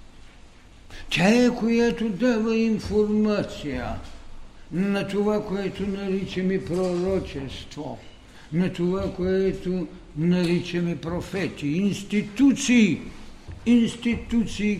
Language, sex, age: Bulgarian, male, 60-79